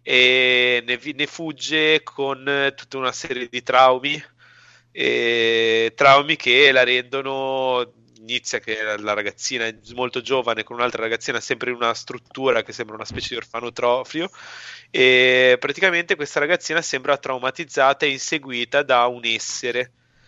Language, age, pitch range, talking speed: Italian, 30-49, 120-145 Hz, 140 wpm